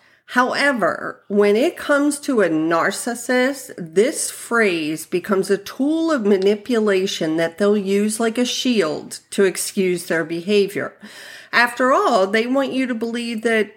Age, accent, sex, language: 50-69, American, female, English